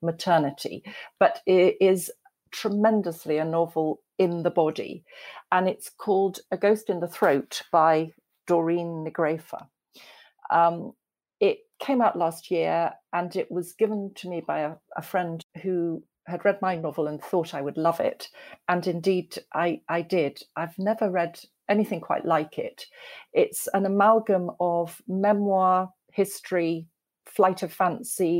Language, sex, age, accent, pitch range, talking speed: English, female, 40-59, British, 170-220 Hz, 145 wpm